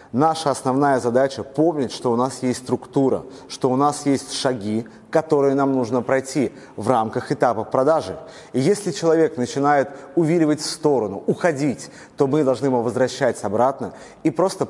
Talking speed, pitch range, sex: 155 wpm, 130-165 Hz, male